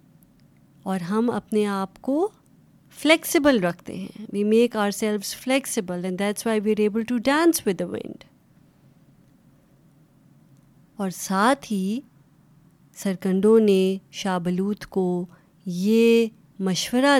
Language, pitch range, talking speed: Urdu, 185-240 Hz, 115 wpm